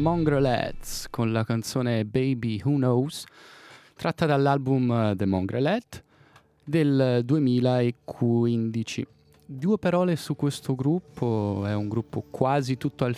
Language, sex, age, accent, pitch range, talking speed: Italian, male, 20-39, native, 105-135 Hz, 110 wpm